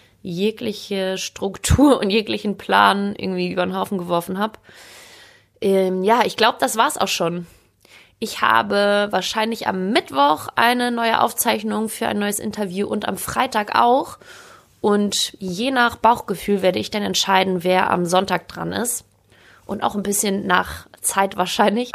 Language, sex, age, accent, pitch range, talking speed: German, female, 20-39, German, 175-210 Hz, 150 wpm